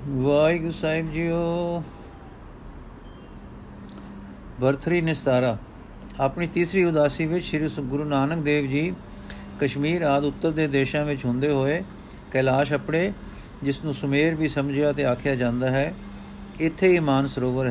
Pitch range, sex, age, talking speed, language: 125-150 Hz, male, 50-69, 125 wpm, Punjabi